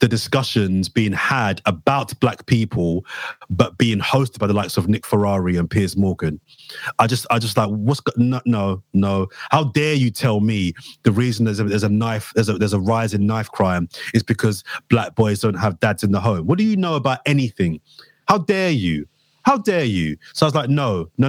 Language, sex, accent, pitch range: English, male, British, 105-140 Hz